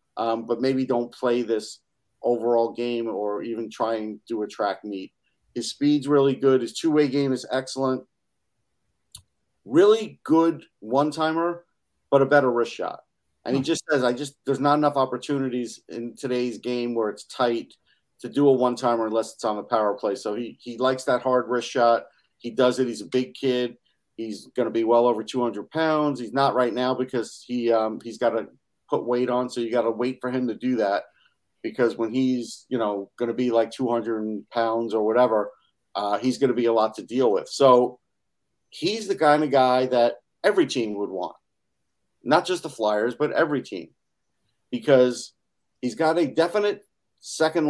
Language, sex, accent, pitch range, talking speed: English, male, American, 115-135 Hz, 190 wpm